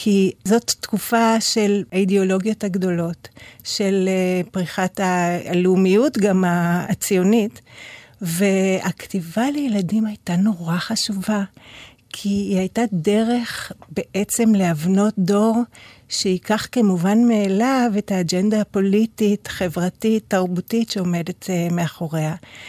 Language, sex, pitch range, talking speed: Hebrew, female, 180-210 Hz, 85 wpm